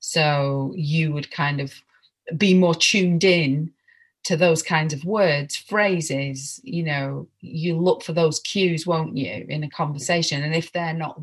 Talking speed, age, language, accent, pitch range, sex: 165 wpm, 30-49, English, British, 150-180 Hz, female